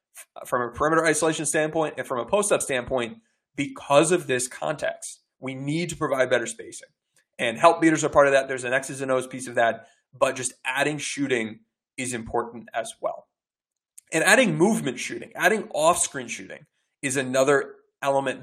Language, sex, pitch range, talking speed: English, male, 125-160 Hz, 175 wpm